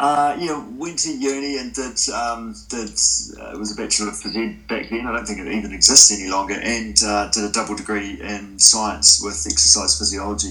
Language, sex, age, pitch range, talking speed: English, male, 30-49, 90-110 Hz, 205 wpm